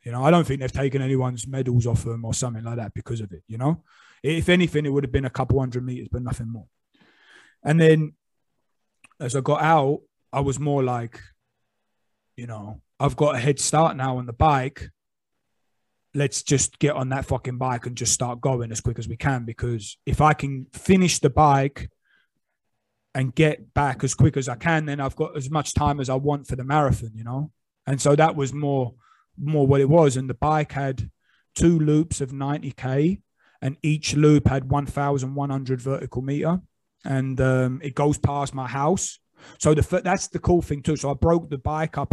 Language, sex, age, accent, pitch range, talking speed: English, male, 20-39, British, 125-145 Hz, 210 wpm